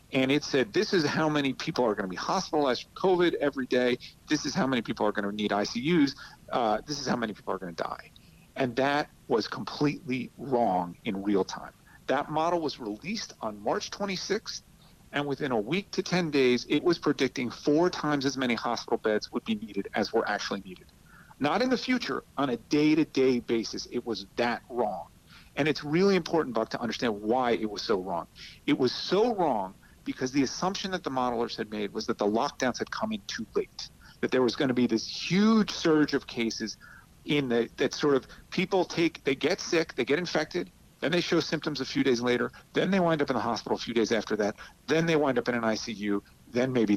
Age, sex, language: 40-59, male, English